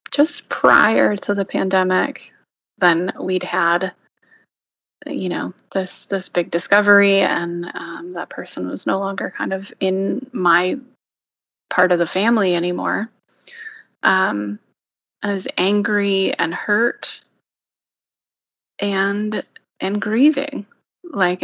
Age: 30-49